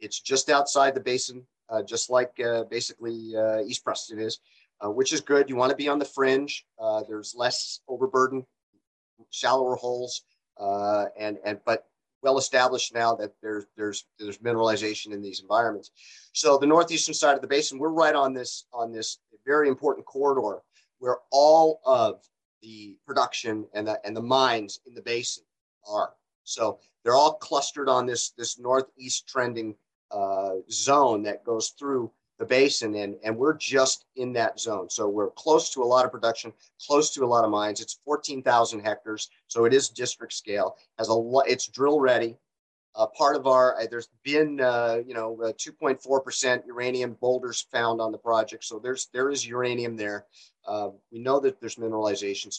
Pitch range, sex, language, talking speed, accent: 110-135 Hz, male, English, 180 wpm, American